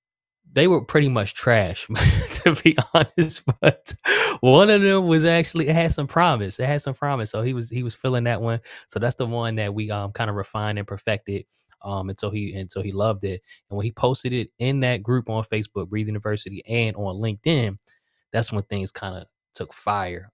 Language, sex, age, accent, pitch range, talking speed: English, male, 20-39, American, 100-120 Hz, 205 wpm